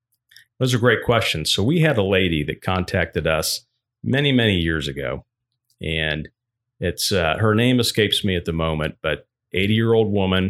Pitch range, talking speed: 90-120 Hz, 165 wpm